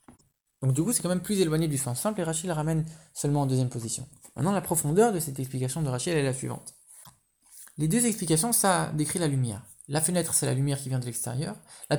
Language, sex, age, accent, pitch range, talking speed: English, male, 20-39, French, 150-195 Hz, 235 wpm